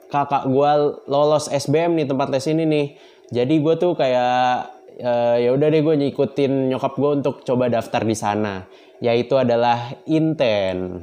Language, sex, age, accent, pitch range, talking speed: Indonesian, male, 20-39, native, 115-145 Hz, 160 wpm